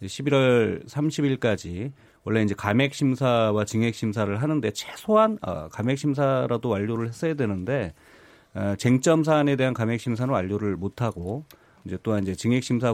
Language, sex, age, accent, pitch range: Korean, male, 30-49, native, 110-150 Hz